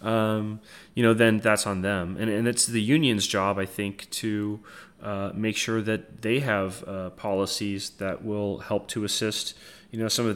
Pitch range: 95-115 Hz